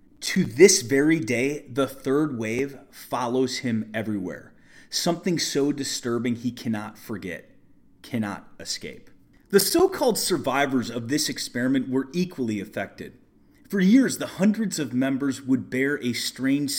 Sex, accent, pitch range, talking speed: male, American, 120-175 Hz, 130 wpm